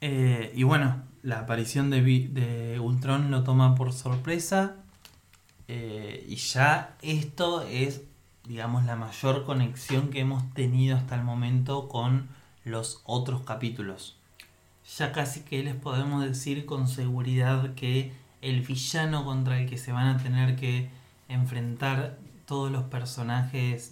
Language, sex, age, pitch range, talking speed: Spanish, male, 20-39, 120-140 Hz, 135 wpm